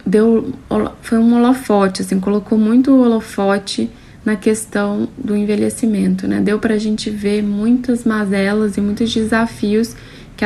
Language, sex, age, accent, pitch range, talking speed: Portuguese, female, 10-29, Brazilian, 190-225 Hz, 130 wpm